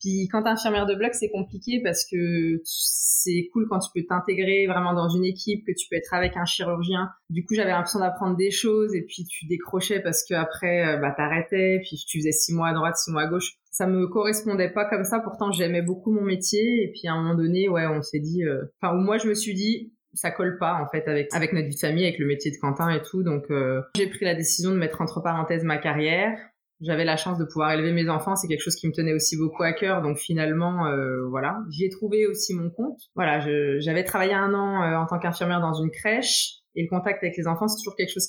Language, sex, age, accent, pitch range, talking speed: French, female, 20-39, French, 165-200 Hz, 255 wpm